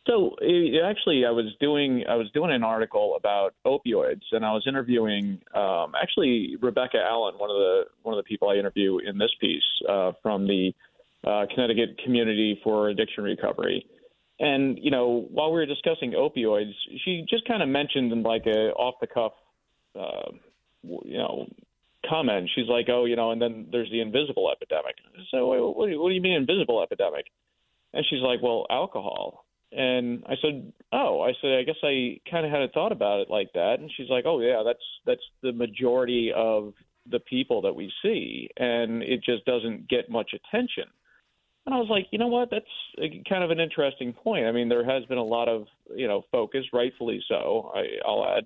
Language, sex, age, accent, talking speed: English, male, 30-49, American, 195 wpm